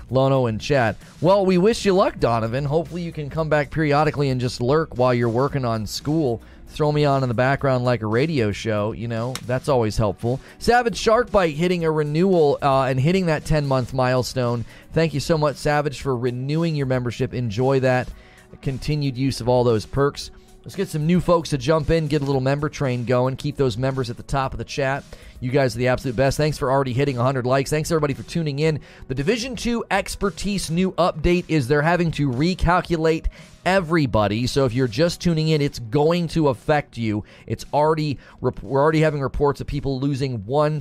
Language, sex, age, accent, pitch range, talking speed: English, male, 30-49, American, 125-160 Hz, 205 wpm